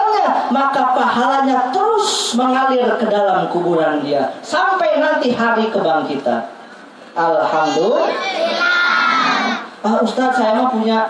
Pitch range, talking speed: 220-315 Hz, 95 wpm